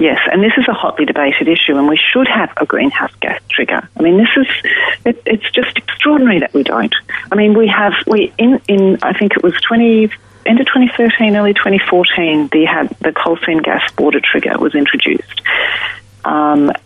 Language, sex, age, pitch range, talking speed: English, female, 40-59, 155-260 Hz, 185 wpm